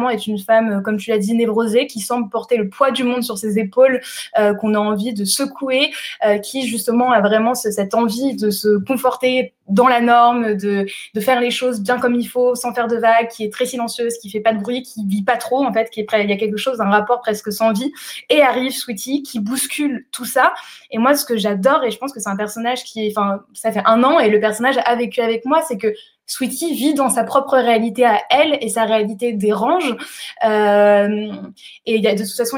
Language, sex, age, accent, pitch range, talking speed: French, female, 20-39, French, 215-255 Hz, 235 wpm